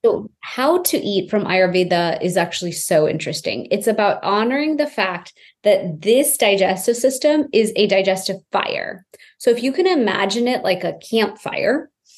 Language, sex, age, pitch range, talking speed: English, female, 20-39, 185-235 Hz, 160 wpm